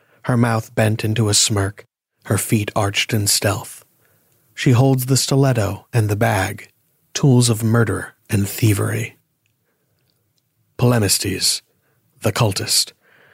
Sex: male